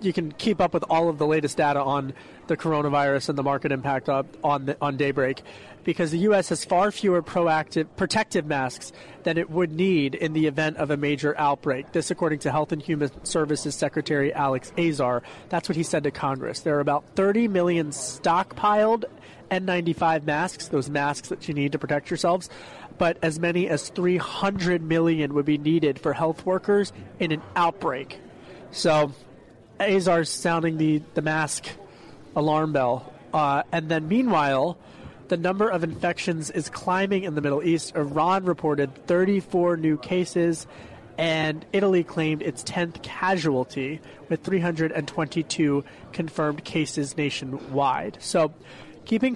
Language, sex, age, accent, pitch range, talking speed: English, male, 30-49, American, 145-175 Hz, 155 wpm